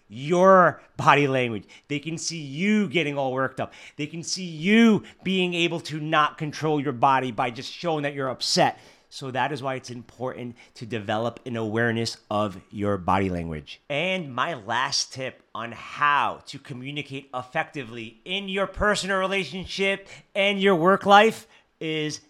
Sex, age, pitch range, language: male, 40-59, 130-180 Hz, English